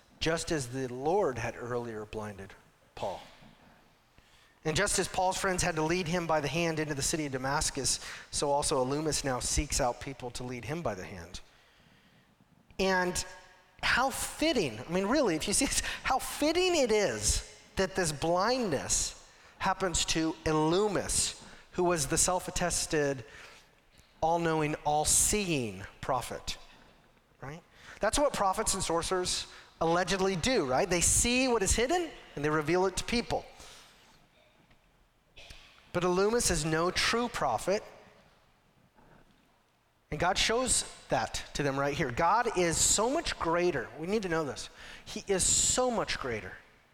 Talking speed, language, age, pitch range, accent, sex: 145 wpm, English, 40-59, 140-185 Hz, American, male